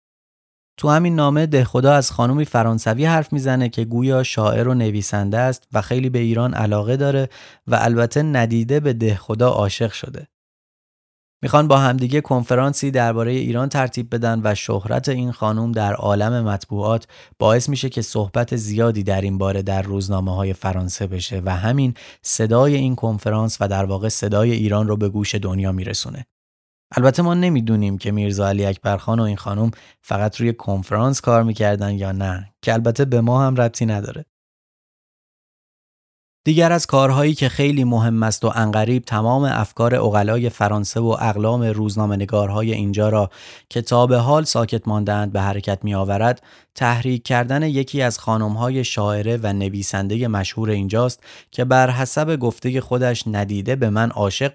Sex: male